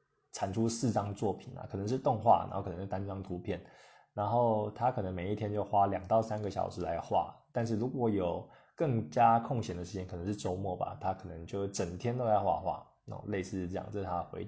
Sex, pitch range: male, 95-115 Hz